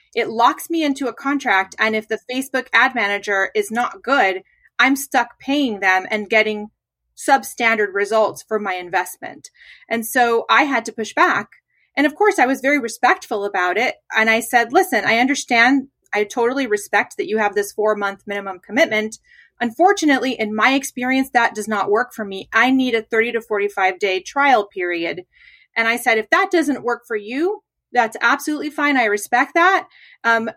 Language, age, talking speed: English, 30-49, 185 wpm